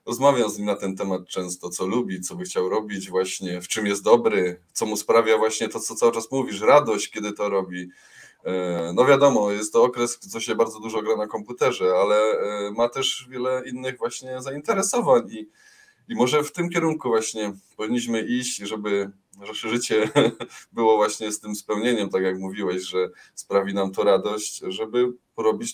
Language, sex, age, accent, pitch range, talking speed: Polish, male, 20-39, native, 100-135 Hz, 180 wpm